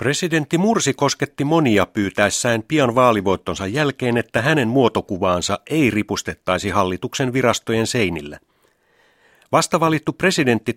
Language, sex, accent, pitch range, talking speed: Finnish, male, native, 105-145 Hz, 100 wpm